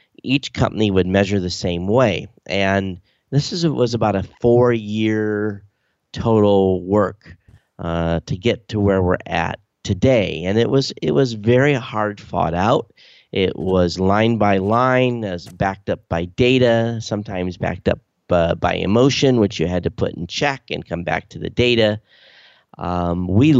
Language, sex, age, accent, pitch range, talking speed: English, male, 40-59, American, 95-115 Hz, 165 wpm